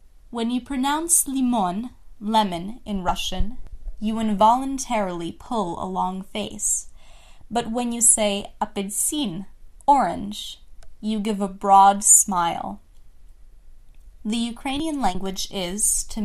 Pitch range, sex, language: 180-230 Hz, female, English